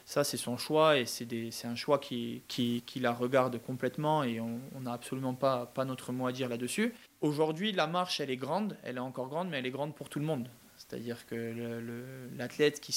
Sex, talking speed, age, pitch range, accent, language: male, 235 wpm, 20-39, 125-150 Hz, French, French